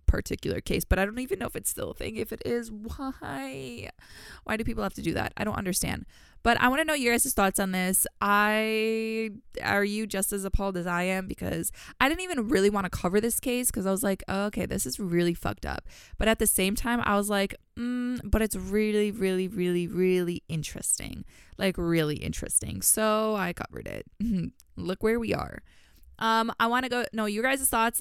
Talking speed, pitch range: 215 wpm, 185-230 Hz